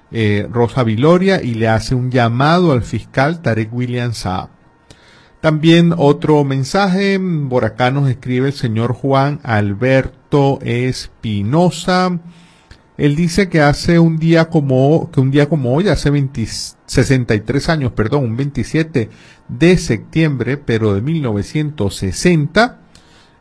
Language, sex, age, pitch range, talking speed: Spanish, male, 50-69, 115-155 Hz, 115 wpm